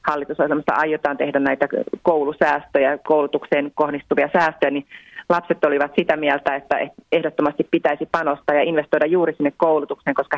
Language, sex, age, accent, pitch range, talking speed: Finnish, female, 30-49, native, 145-175 Hz, 135 wpm